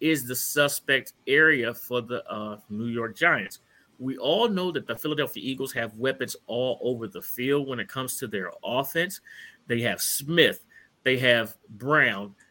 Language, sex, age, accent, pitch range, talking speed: English, male, 30-49, American, 115-150 Hz, 170 wpm